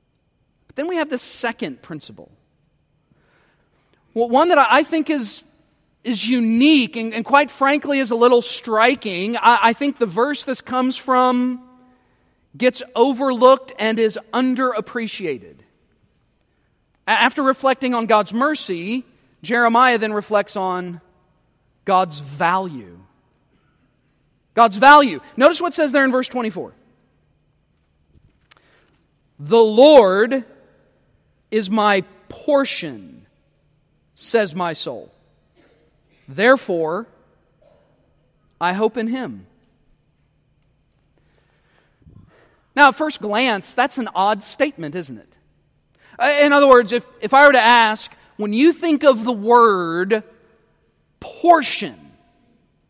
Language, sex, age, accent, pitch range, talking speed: English, male, 40-59, American, 210-265 Hz, 110 wpm